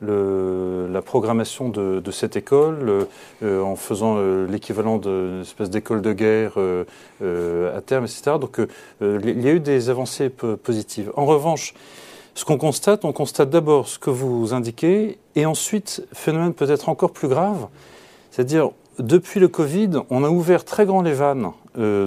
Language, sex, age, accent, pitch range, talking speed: French, male, 40-59, French, 115-180 Hz, 175 wpm